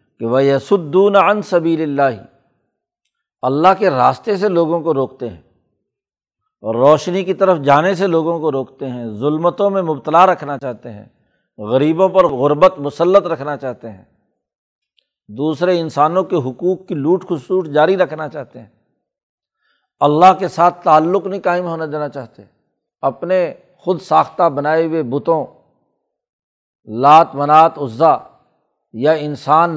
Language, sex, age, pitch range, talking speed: Urdu, male, 60-79, 135-180 Hz, 140 wpm